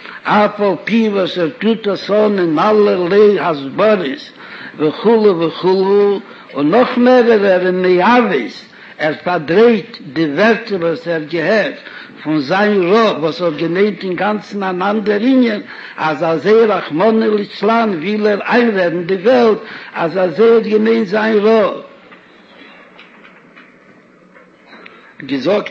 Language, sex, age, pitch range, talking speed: Hebrew, male, 60-79, 185-220 Hz, 95 wpm